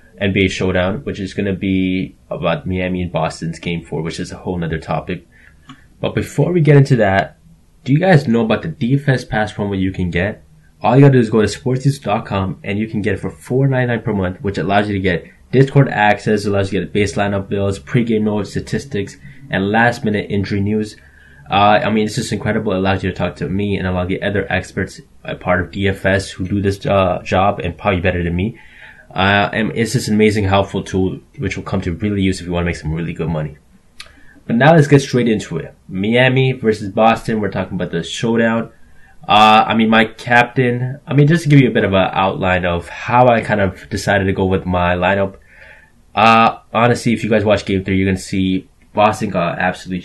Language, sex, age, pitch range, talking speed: English, male, 10-29, 90-110 Hz, 230 wpm